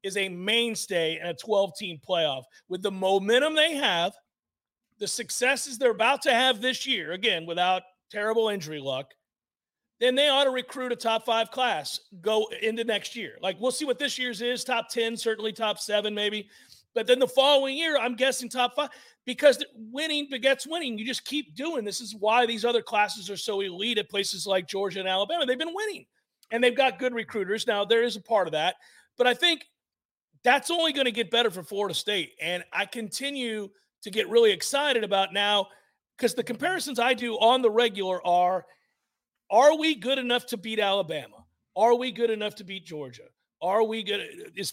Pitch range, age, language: 205-270 Hz, 40-59, English